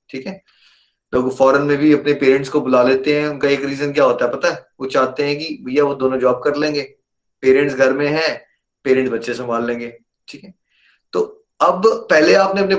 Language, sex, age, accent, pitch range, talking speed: Hindi, male, 20-39, native, 145-190 Hz, 215 wpm